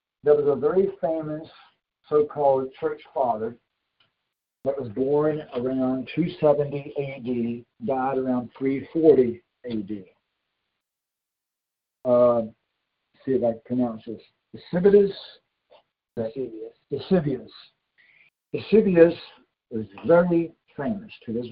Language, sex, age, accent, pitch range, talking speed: English, male, 60-79, American, 125-160 Hz, 95 wpm